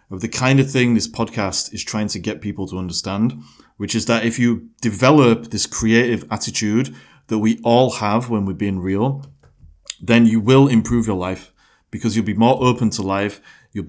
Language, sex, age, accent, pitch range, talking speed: English, male, 30-49, British, 95-115 Hz, 195 wpm